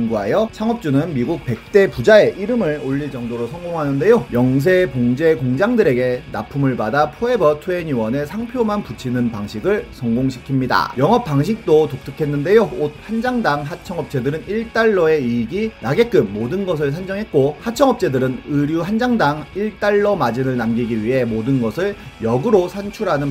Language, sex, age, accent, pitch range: Korean, male, 30-49, native, 130-205 Hz